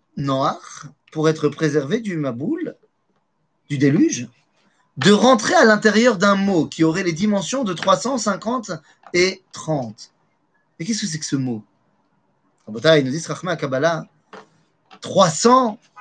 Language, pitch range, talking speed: French, 145-210 Hz, 130 wpm